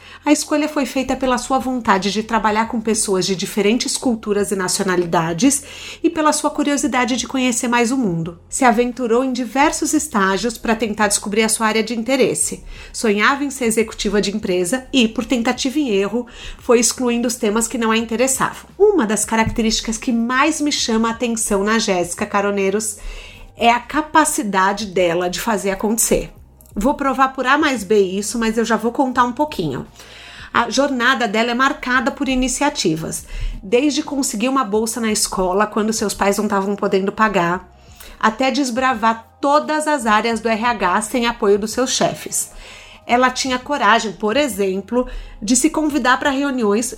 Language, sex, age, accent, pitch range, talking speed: Portuguese, female, 40-59, Brazilian, 210-265 Hz, 170 wpm